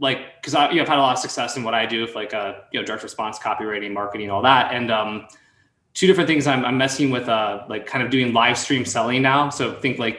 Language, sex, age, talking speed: English, male, 20-39, 275 wpm